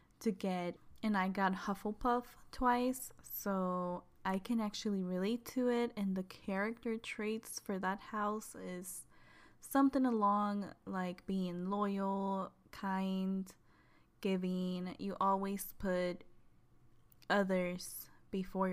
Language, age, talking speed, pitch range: English, 10-29, 110 wpm, 185-215 Hz